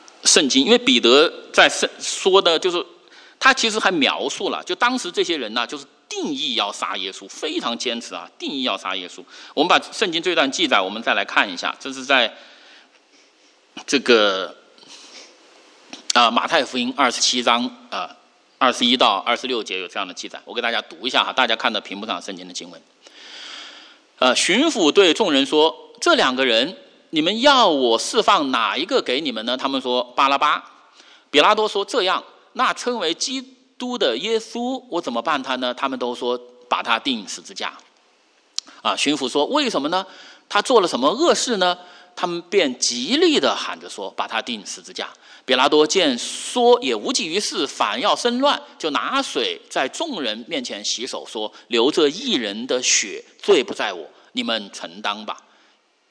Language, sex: English, male